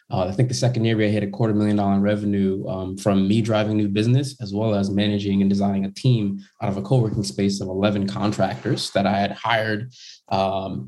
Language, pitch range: English, 100-115 Hz